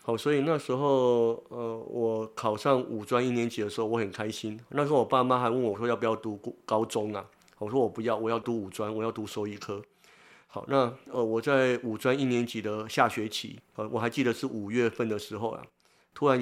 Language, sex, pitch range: Chinese, male, 105-125 Hz